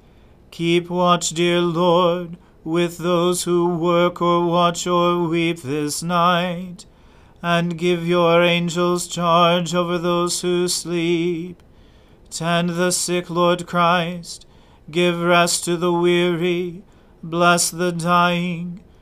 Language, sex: English, male